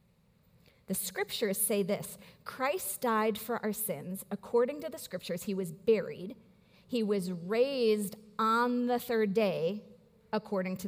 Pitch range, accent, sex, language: 190-245 Hz, American, female, English